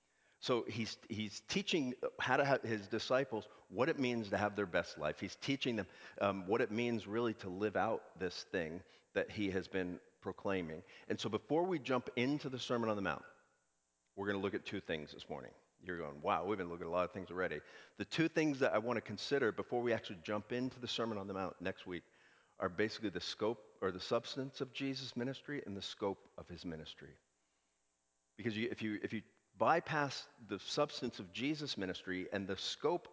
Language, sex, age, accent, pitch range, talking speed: English, male, 50-69, American, 90-120 Hz, 215 wpm